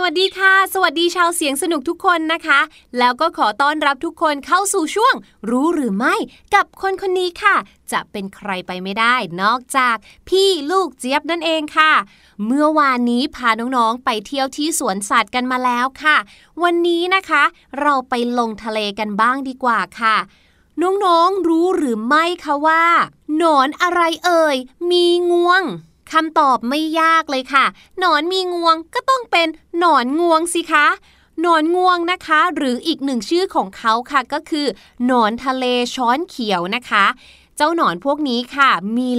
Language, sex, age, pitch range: Thai, female, 20-39, 250-345 Hz